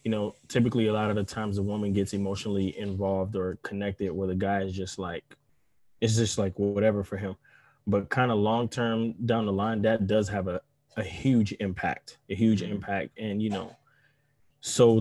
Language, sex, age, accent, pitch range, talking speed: English, male, 20-39, American, 100-115 Hz, 190 wpm